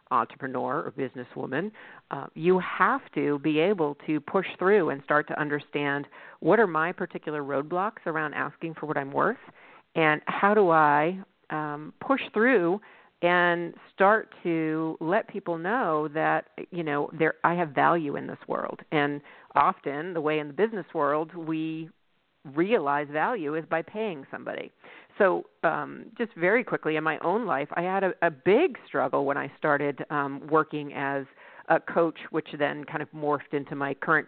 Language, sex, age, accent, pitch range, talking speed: English, female, 50-69, American, 150-180 Hz, 170 wpm